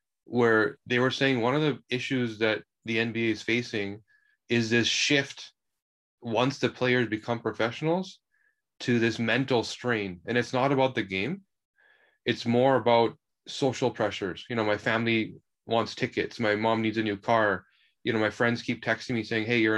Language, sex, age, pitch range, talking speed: English, male, 20-39, 110-125 Hz, 175 wpm